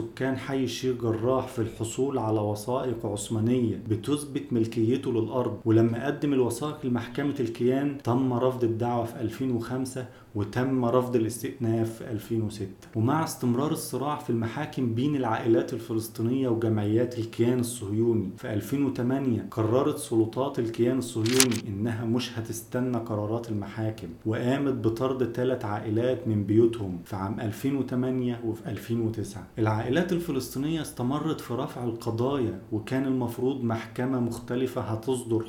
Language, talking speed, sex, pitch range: Arabic, 120 wpm, male, 110-130 Hz